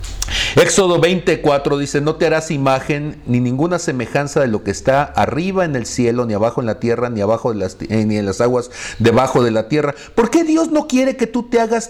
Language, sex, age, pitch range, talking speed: Spanish, male, 50-69, 110-180 Hz, 225 wpm